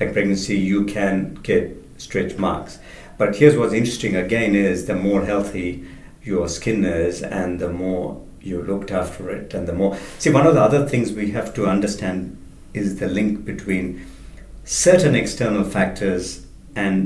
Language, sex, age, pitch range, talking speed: English, male, 50-69, 85-100 Hz, 160 wpm